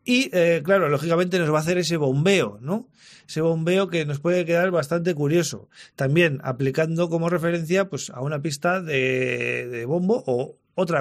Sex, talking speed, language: male, 175 wpm, Spanish